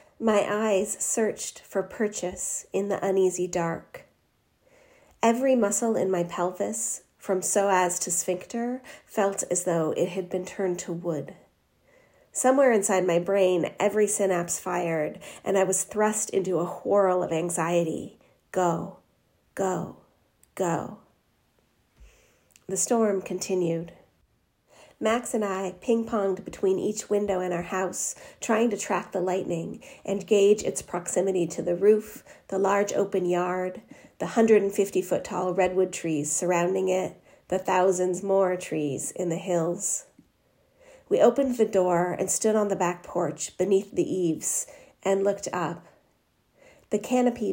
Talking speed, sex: 135 wpm, female